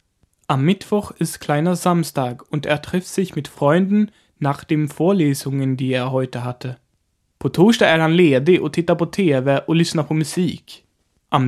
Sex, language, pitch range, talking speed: male, German, 135-180 Hz, 160 wpm